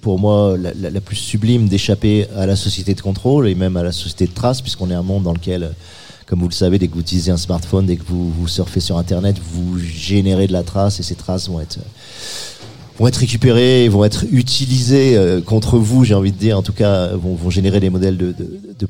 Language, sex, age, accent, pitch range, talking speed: French, male, 40-59, French, 95-110 Hz, 240 wpm